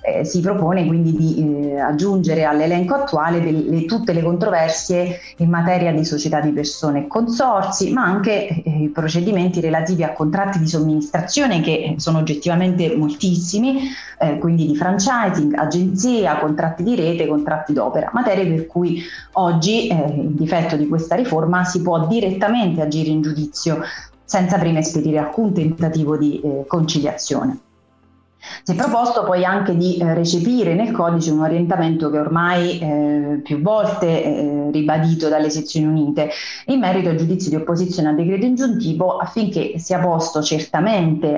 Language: Italian